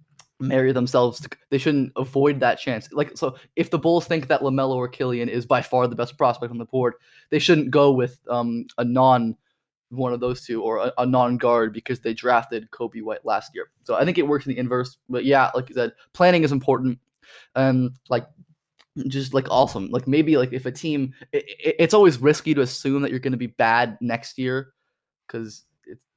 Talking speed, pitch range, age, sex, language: 205 wpm, 120-140 Hz, 20-39, male, English